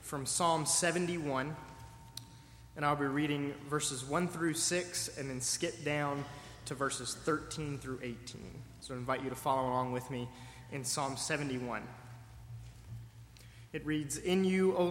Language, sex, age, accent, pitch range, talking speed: English, male, 20-39, American, 120-155 Hz, 150 wpm